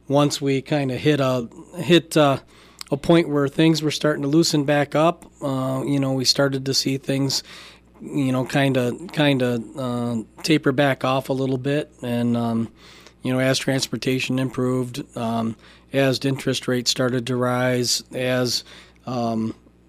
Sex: male